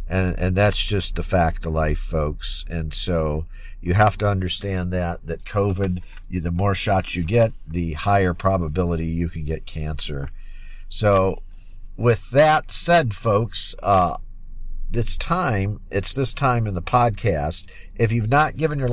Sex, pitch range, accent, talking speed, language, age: male, 90-115 Hz, American, 155 wpm, English, 50-69